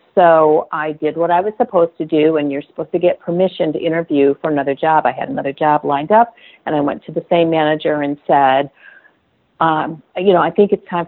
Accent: American